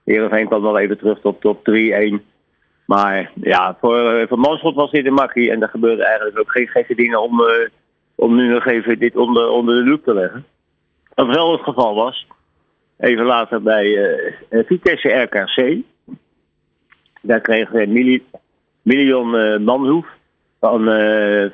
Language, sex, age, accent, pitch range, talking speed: Dutch, male, 50-69, Dutch, 110-130 Hz, 160 wpm